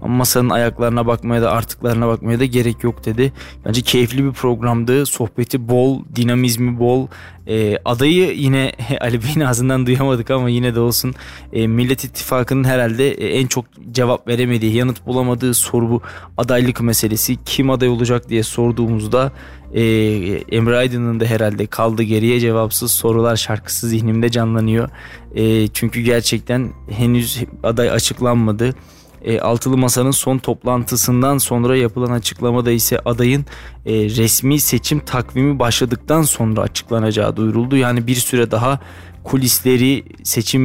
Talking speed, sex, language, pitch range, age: 135 wpm, male, Turkish, 115-130 Hz, 20-39